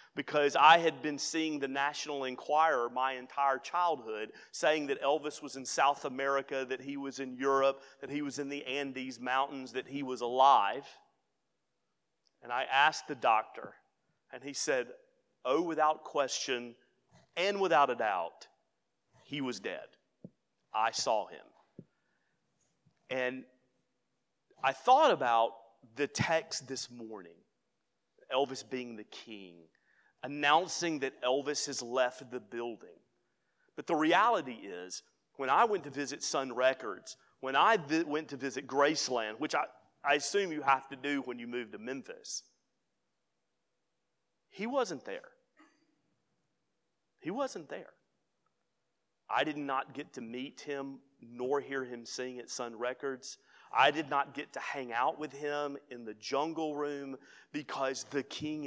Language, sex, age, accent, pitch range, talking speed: English, male, 30-49, American, 130-150 Hz, 145 wpm